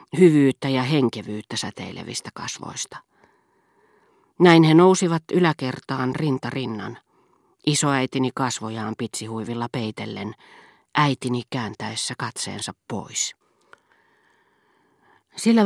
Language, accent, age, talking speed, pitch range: Finnish, native, 40-59, 75 wpm, 120-180 Hz